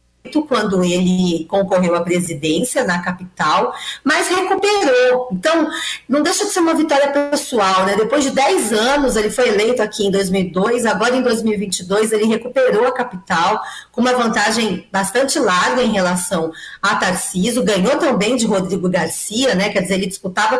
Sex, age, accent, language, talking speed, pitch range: female, 40-59, Brazilian, Portuguese, 155 wpm, 190-255 Hz